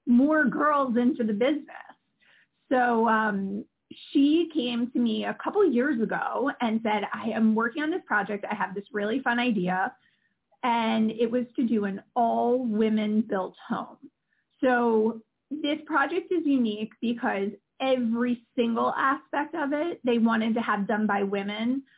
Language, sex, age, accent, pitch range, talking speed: English, female, 30-49, American, 220-255 Hz, 155 wpm